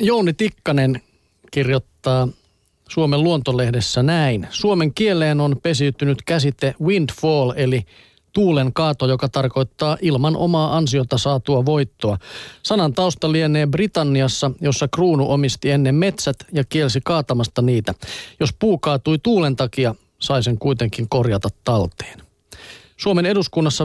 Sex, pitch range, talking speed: male, 125-155 Hz, 120 wpm